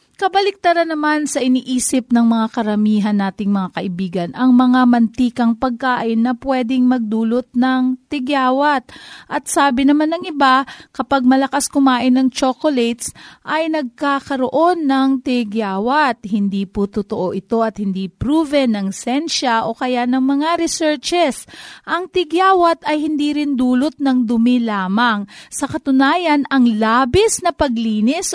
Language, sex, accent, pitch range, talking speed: Filipino, female, native, 235-310 Hz, 130 wpm